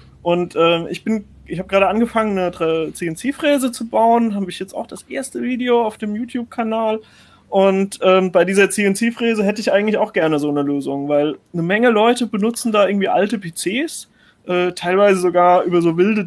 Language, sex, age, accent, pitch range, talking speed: German, male, 30-49, German, 160-215 Hz, 185 wpm